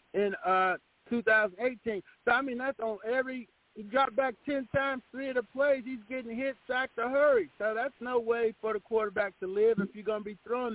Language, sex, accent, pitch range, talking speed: English, male, American, 200-245 Hz, 220 wpm